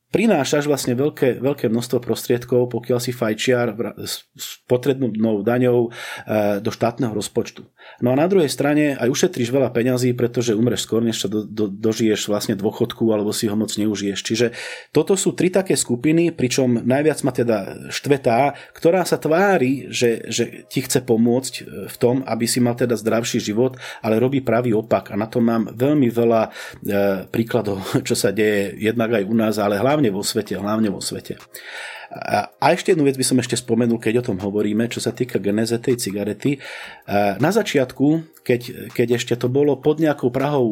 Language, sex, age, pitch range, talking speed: Slovak, male, 30-49, 110-130 Hz, 175 wpm